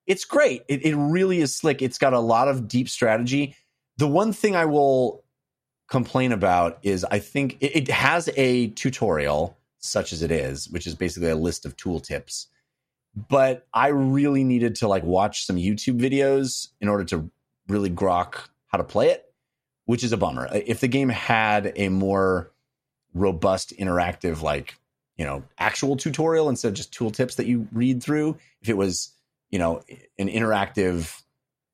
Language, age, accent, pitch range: English, 30-49, American, 95-140 Hz